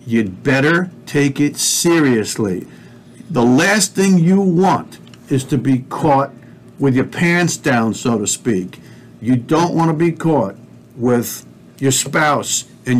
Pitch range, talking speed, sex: 130-165 Hz, 140 wpm, male